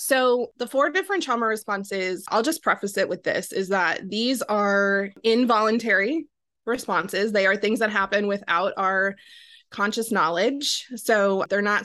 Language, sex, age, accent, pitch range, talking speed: English, female, 20-39, American, 195-235 Hz, 150 wpm